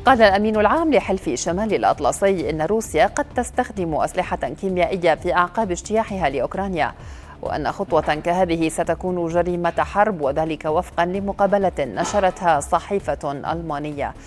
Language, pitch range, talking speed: Arabic, 160-200 Hz, 120 wpm